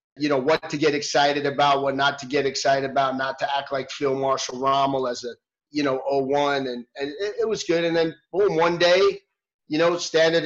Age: 30-49